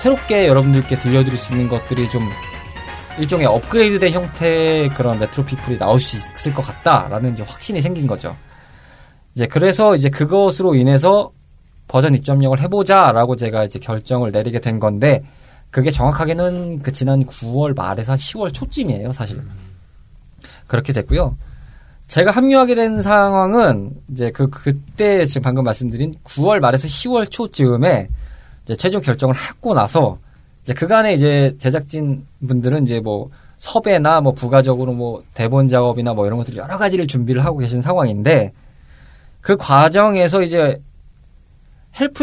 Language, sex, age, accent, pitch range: Korean, male, 20-39, native, 120-165 Hz